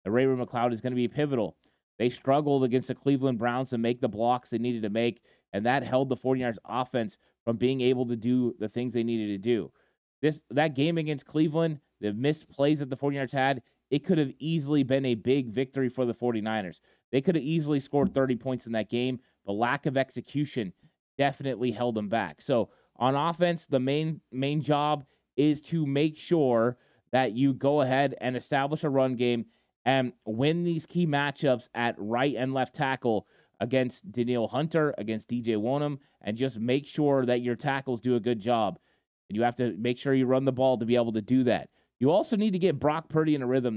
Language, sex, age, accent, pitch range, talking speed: English, male, 20-39, American, 120-145 Hz, 210 wpm